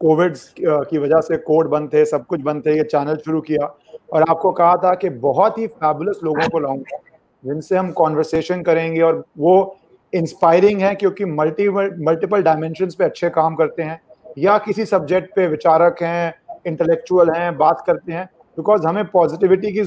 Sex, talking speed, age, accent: male, 175 wpm, 30-49, native